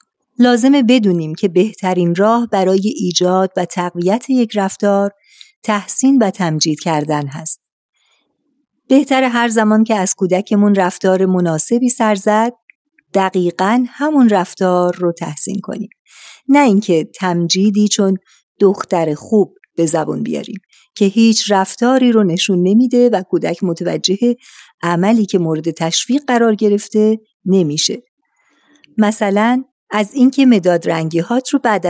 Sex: female